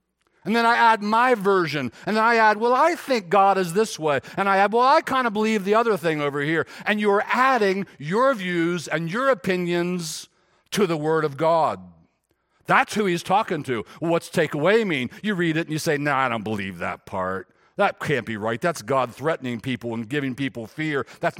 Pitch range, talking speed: 155-220 Hz, 215 wpm